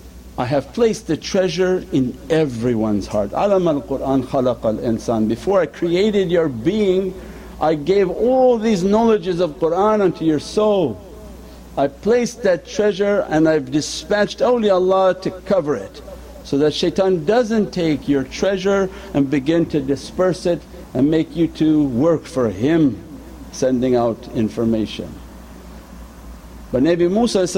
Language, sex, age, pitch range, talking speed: English, male, 60-79, 125-185 Hz, 135 wpm